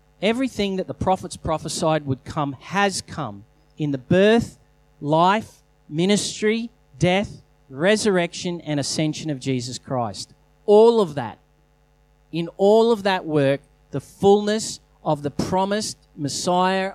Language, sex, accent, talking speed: English, male, Australian, 125 wpm